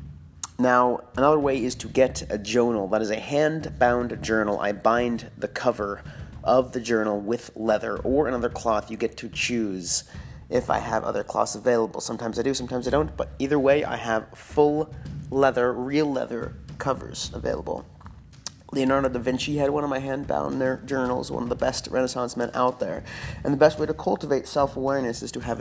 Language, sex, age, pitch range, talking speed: English, male, 30-49, 105-130 Hz, 185 wpm